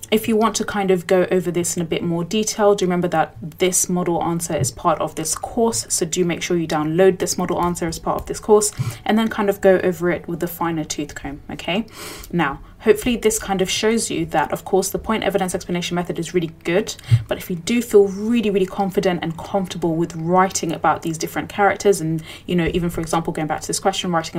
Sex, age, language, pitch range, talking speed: female, 20-39, English, 165-200 Hz, 245 wpm